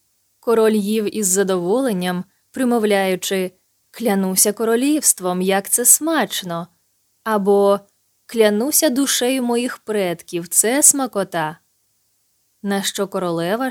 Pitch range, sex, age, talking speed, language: 185-240 Hz, female, 20-39, 90 wpm, Ukrainian